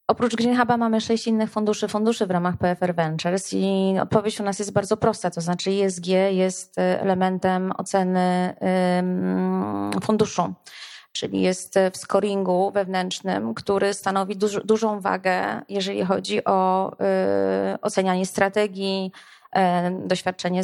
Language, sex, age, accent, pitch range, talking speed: Polish, female, 20-39, native, 180-205 Hz, 120 wpm